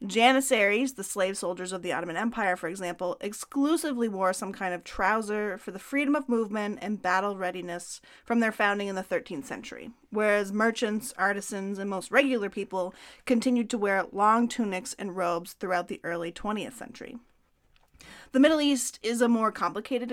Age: 30-49